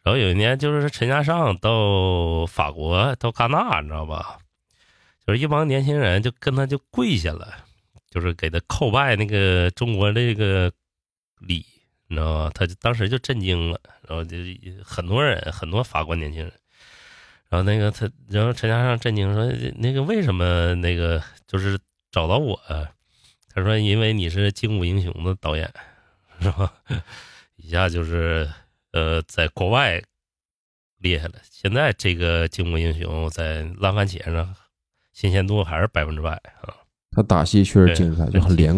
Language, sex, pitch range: Chinese, male, 85-110 Hz